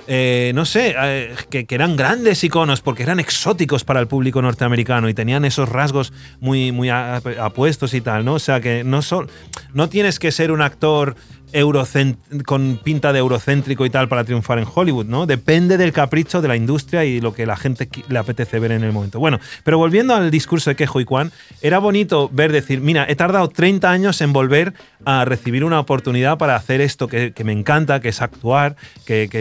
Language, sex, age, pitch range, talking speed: English, male, 30-49, 125-155 Hz, 205 wpm